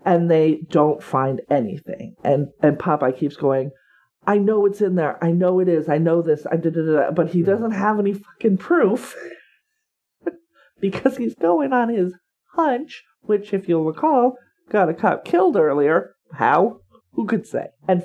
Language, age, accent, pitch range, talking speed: English, 40-59, American, 145-200 Hz, 180 wpm